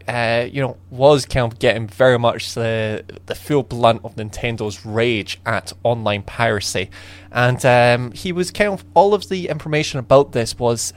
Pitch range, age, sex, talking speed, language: 100-125 Hz, 20-39, male, 175 wpm, English